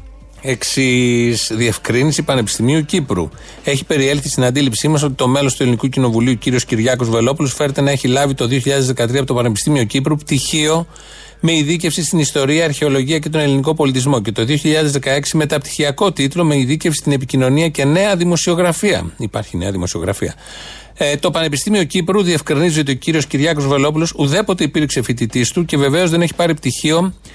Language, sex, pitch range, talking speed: Greek, male, 135-175 Hz, 160 wpm